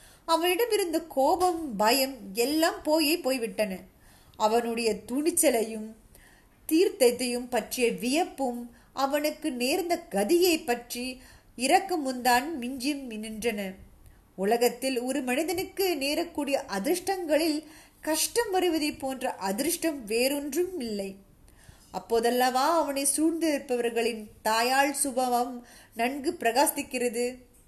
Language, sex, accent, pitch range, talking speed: Tamil, female, native, 230-300 Hz, 55 wpm